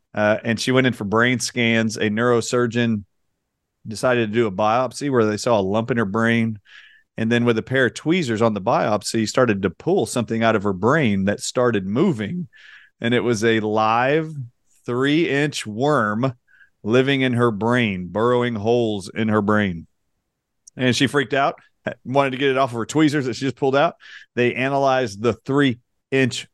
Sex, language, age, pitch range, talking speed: male, English, 40-59, 110-130 Hz, 185 wpm